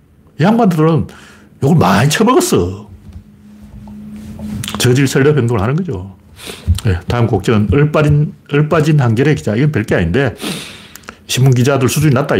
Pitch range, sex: 100-155 Hz, male